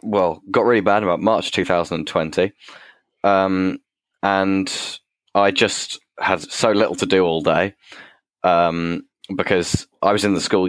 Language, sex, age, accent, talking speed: English, male, 10-29, British, 140 wpm